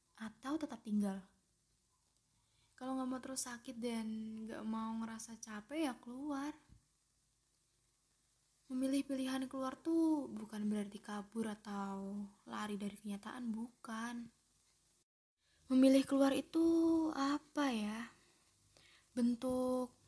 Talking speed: 100 wpm